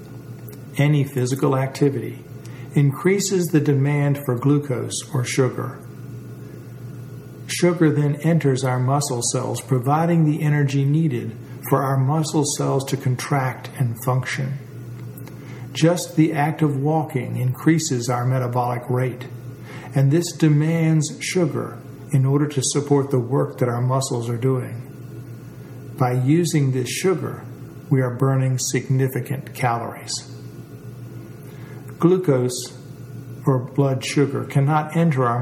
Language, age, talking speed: English, 50-69, 115 wpm